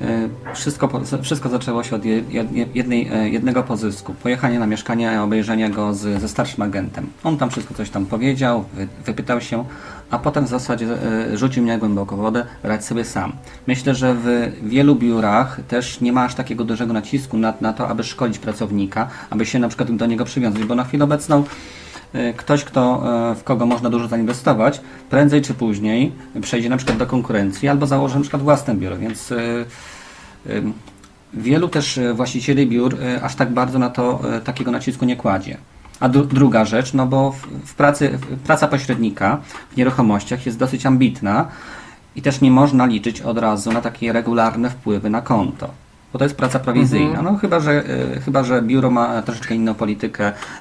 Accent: native